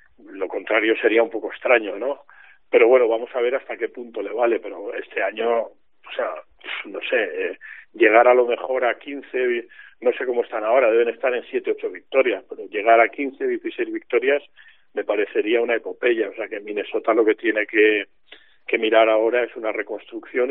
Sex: male